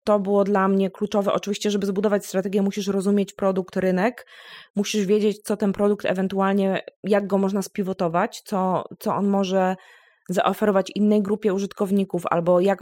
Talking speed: 155 wpm